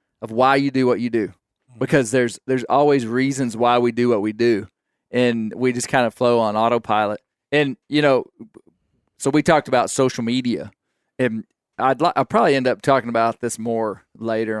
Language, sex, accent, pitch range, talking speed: English, male, American, 115-140 Hz, 195 wpm